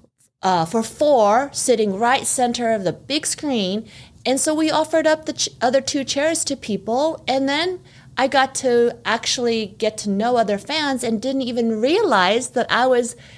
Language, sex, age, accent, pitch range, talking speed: English, female, 40-59, American, 190-270 Hz, 175 wpm